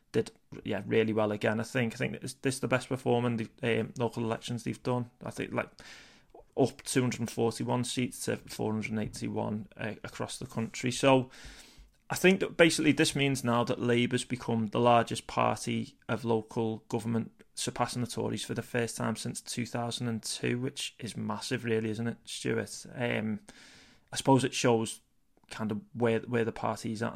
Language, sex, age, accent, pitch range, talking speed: English, male, 20-39, British, 110-125 Hz, 190 wpm